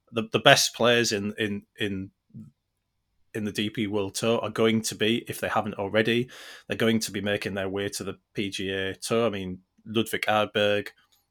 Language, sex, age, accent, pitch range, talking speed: English, male, 20-39, British, 100-115 Hz, 190 wpm